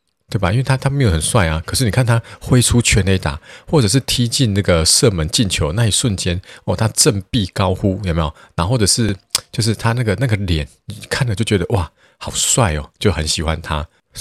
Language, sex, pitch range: Chinese, male, 80-105 Hz